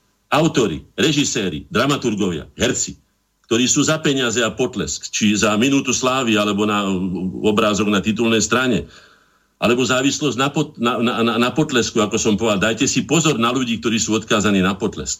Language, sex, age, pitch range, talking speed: Slovak, male, 50-69, 100-125 Hz, 160 wpm